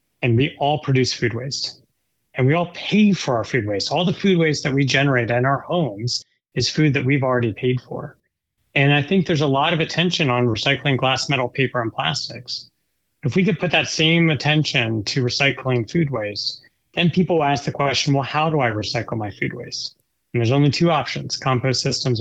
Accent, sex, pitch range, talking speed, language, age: American, male, 120-145 Hz, 210 wpm, English, 30-49